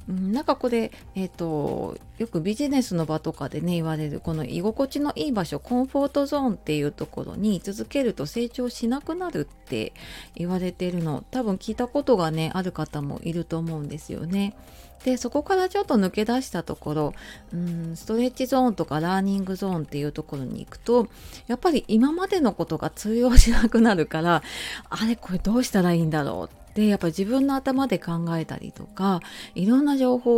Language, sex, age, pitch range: Japanese, female, 30-49, 165-245 Hz